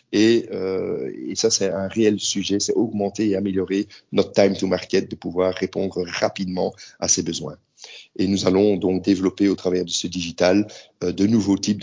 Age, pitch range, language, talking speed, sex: 40-59, 95-110 Hz, Hungarian, 190 wpm, male